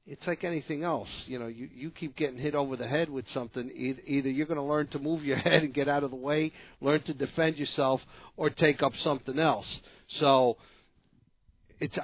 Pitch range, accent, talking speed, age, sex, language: 120-140 Hz, American, 210 wpm, 50-69, male, English